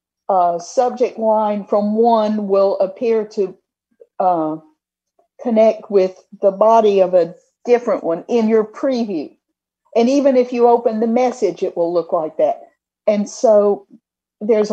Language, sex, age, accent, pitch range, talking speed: English, female, 50-69, American, 195-255 Hz, 145 wpm